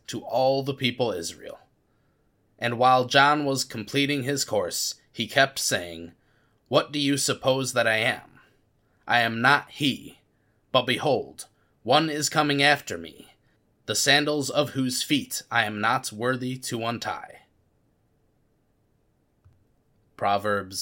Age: 20-39